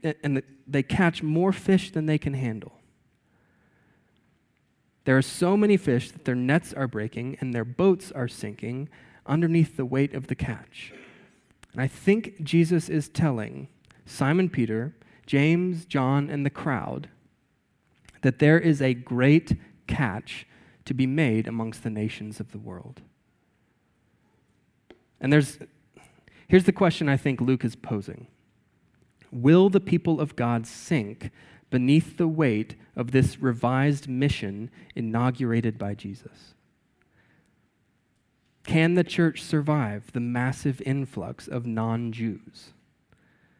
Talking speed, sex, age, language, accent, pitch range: 130 wpm, male, 20-39, English, American, 120-155 Hz